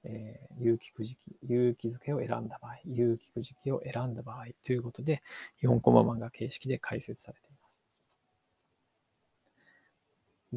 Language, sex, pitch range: Japanese, male, 115-135 Hz